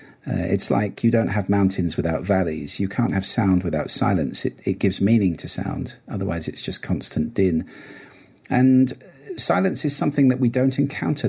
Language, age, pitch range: English, 50-69, 90-115 Hz